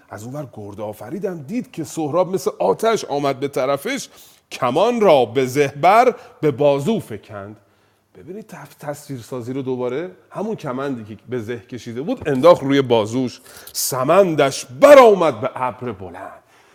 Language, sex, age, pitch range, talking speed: Persian, male, 40-59, 120-180 Hz, 135 wpm